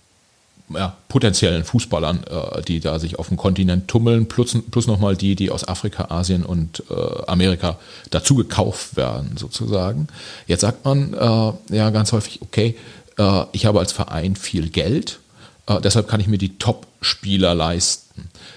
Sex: male